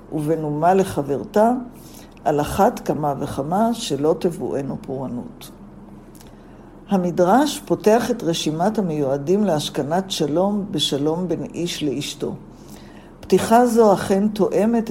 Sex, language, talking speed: female, Hebrew, 100 wpm